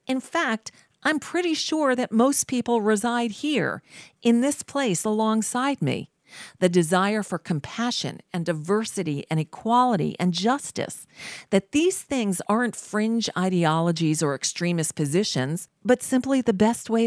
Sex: female